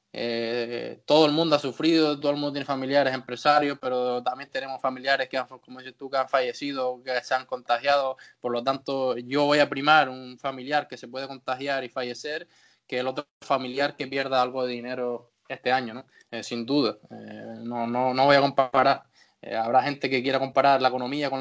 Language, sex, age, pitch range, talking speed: Spanish, male, 20-39, 125-150 Hz, 205 wpm